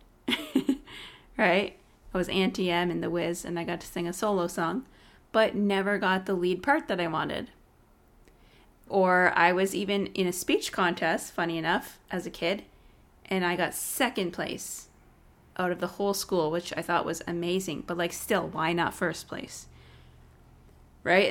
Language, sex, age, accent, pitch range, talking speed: English, female, 30-49, American, 170-200 Hz, 170 wpm